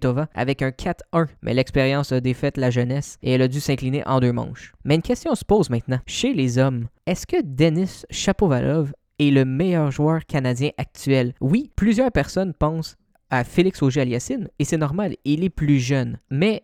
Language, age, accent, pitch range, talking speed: French, 20-39, Canadian, 135-180 Hz, 185 wpm